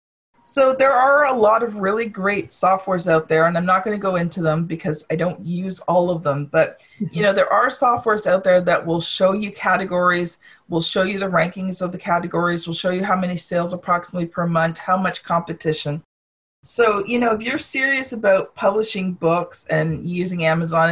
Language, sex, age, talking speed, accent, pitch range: English, female, 40-59, 205 wpm, American, 175-220 Hz